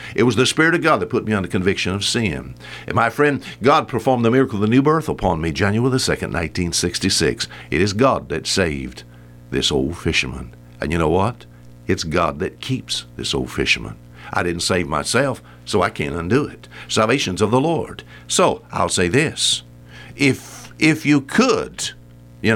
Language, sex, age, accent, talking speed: English, male, 60-79, American, 190 wpm